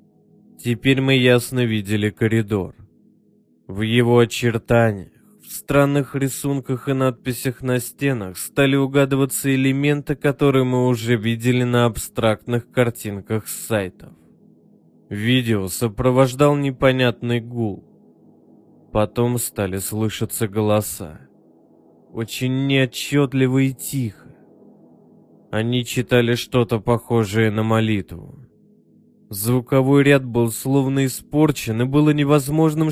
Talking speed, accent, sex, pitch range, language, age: 95 wpm, native, male, 110-135 Hz, Russian, 20-39